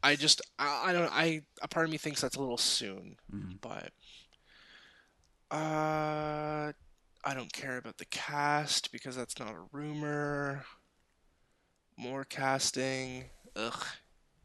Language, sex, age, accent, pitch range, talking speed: English, male, 20-39, American, 125-150 Hz, 125 wpm